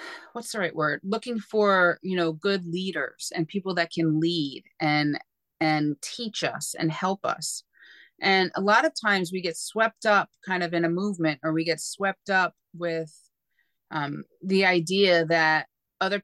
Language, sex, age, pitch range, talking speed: English, female, 30-49, 165-210 Hz, 175 wpm